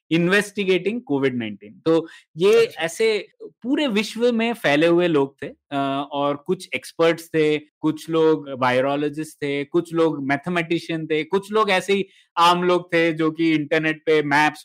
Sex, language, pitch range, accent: male, Hindi, 150-195 Hz, native